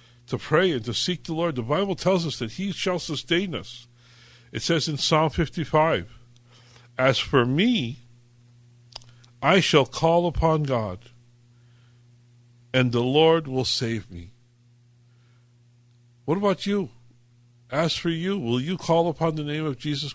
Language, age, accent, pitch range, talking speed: English, 50-69, American, 120-160 Hz, 145 wpm